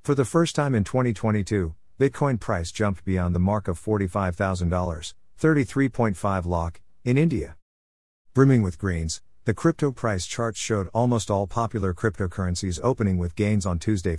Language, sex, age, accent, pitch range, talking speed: English, male, 50-69, American, 90-115 Hz, 150 wpm